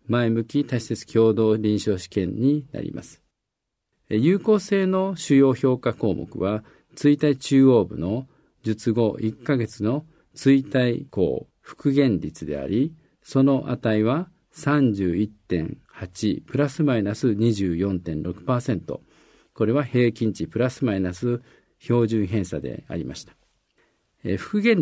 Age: 50-69